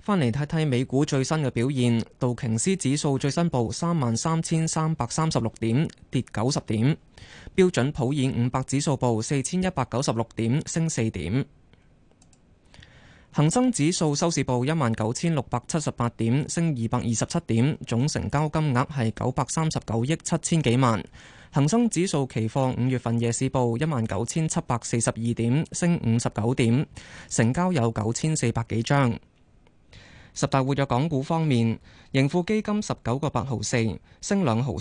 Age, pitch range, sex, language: 20-39, 115-155 Hz, male, Chinese